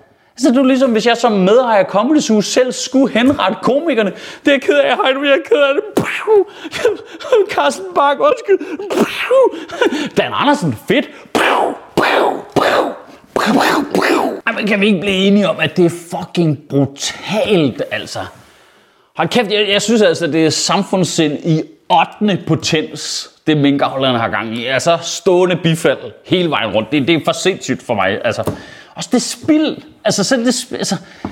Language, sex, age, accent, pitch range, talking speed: Danish, male, 30-49, native, 185-290 Hz, 165 wpm